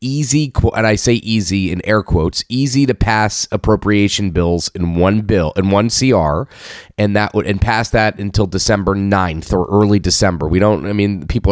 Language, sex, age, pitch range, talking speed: English, male, 30-49, 90-110 Hz, 190 wpm